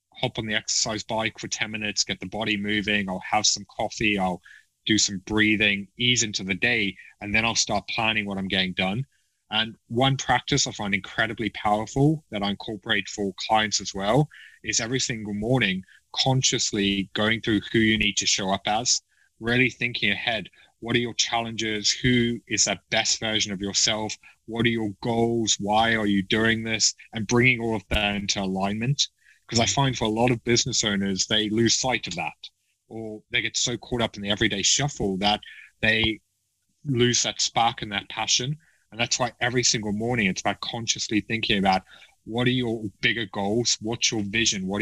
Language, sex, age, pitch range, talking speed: English, male, 20-39, 100-120 Hz, 190 wpm